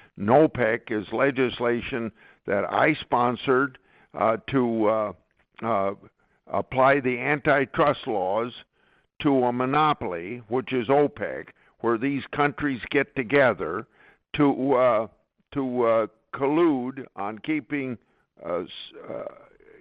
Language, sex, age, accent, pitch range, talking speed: English, male, 60-79, American, 115-135 Hz, 100 wpm